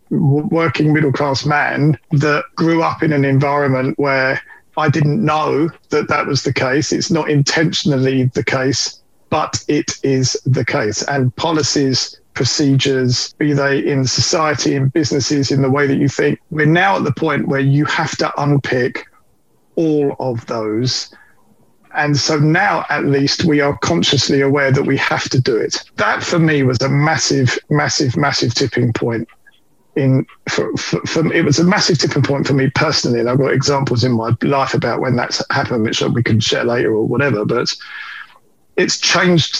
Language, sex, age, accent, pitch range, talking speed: English, male, 40-59, British, 135-150 Hz, 175 wpm